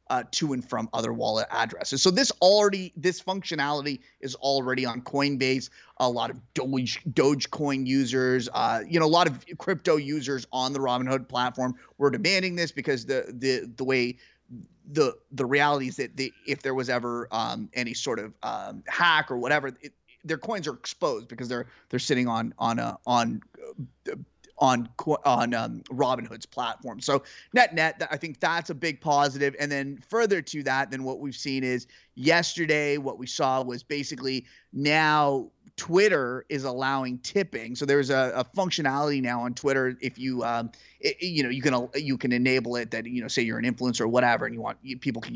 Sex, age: male, 30-49